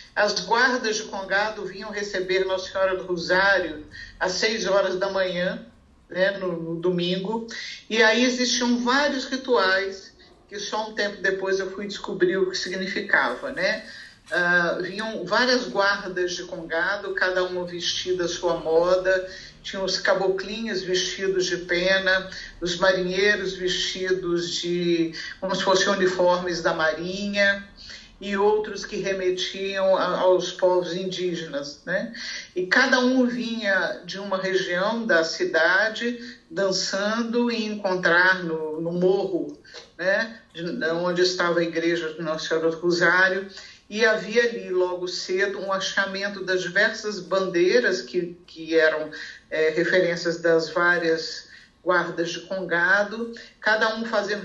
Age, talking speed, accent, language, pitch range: 50-69, 135 wpm, Brazilian, Portuguese, 175-210 Hz